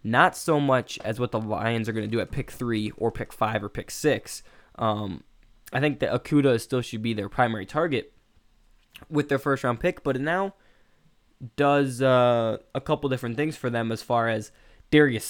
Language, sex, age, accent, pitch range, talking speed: English, male, 10-29, American, 115-145 Hz, 195 wpm